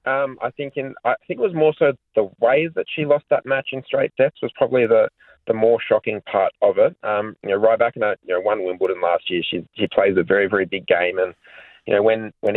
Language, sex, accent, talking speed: English, male, Australian, 265 wpm